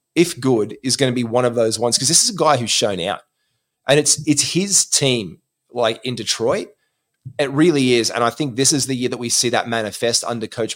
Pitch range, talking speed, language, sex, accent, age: 115-140 Hz, 240 wpm, English, male, Australian, 20-39